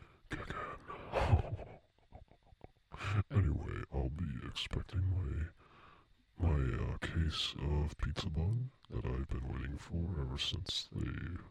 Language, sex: English, female